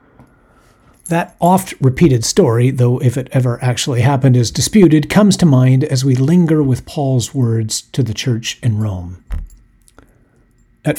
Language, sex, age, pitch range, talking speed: English, male, 50-69, 120-150 Hz, 140 wpm